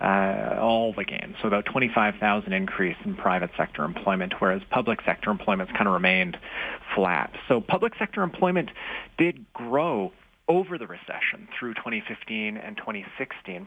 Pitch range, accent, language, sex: 105-145 Hz, American, English, male